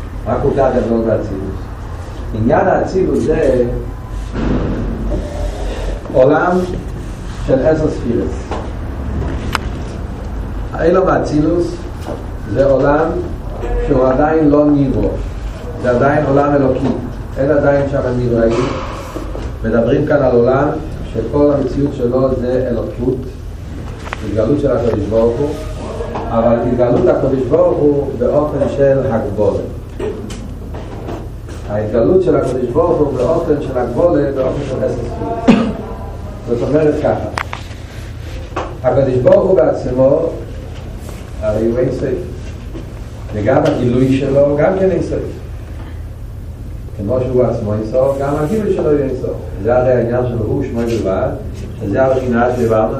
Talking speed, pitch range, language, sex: 105 wpm, 105-135 Hz, Hebrew, male